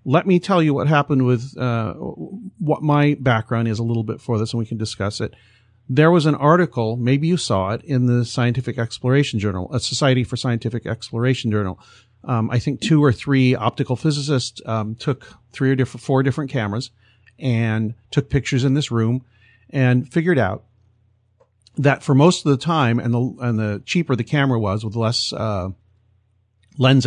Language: English